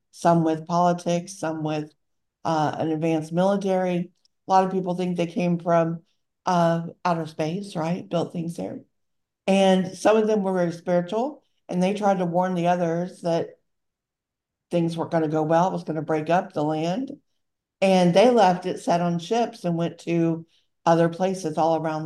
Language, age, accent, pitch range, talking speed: English, 60-79, American, 165-190 Hz, 180 wpm